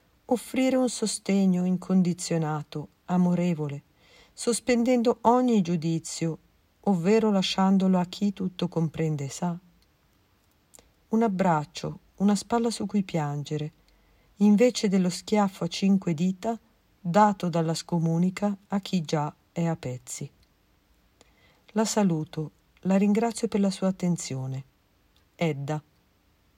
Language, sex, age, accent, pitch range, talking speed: Italian, female, 50-69, native, 160-210 Hz, 105 wpm